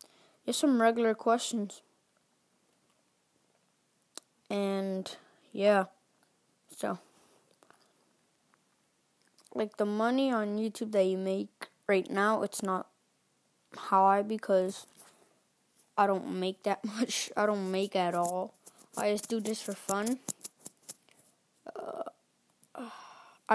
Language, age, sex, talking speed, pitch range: English, 20-39, female, 95 wpm, 195-230 Hz